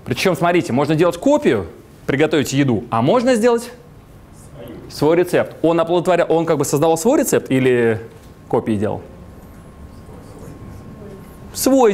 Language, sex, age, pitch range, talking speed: Russian, male, 30-49, 120-175 Hz, 120 wpm